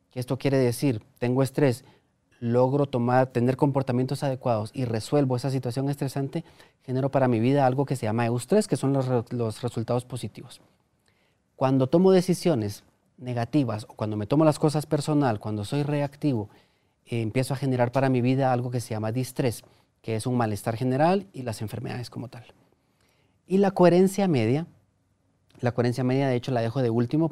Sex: male